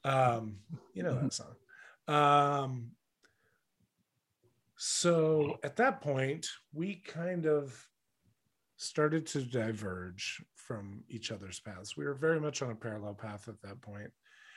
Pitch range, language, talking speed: 115-150 Hz, English, 130 wpm